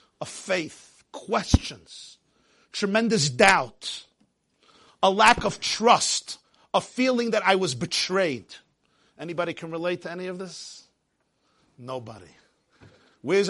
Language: English